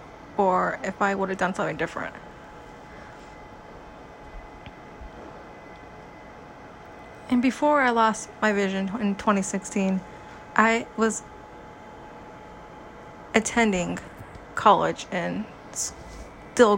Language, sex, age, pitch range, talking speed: English, female, 20-39, 185-220 Hz, 80 wpm